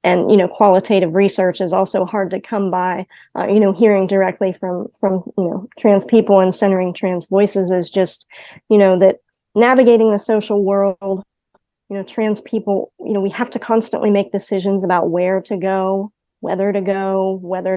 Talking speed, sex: 185 wpm, female